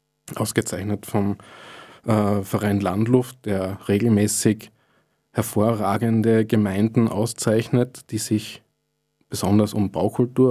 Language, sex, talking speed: German, male, 85 wpm